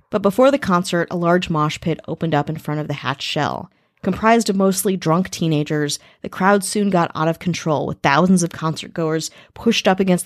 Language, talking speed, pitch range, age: English, 205 wpm, 165-205 Hz, 30-49